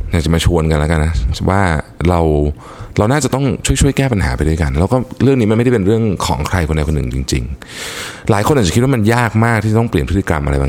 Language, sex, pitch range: Thai, male, 75-105 Hz